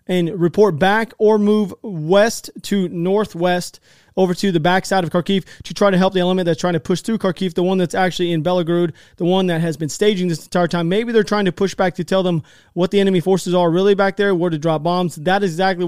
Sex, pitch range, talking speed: male, 165-190 Hz, 245 wpm